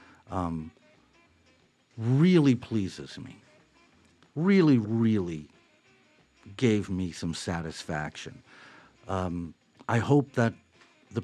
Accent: American